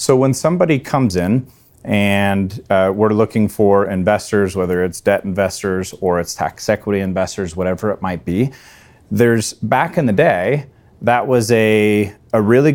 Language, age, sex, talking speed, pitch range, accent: English, 30-49, male, 160 wpm, 100-120 Hz, American